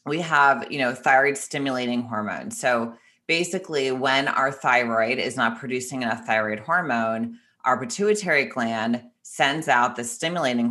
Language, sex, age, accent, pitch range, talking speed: English, female, 30-49, American, 115-145 Hz, 140 wpm